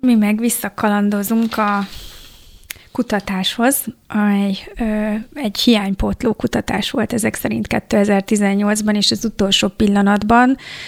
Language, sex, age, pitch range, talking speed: Hungarian, female, 30-49, 195-215 Hz, 100 wpm